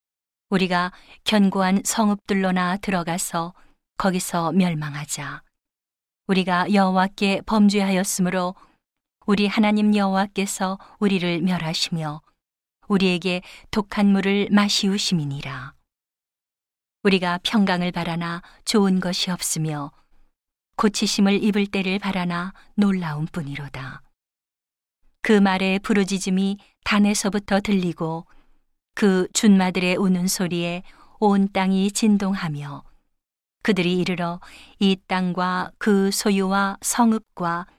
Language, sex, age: Korean, female, 40-59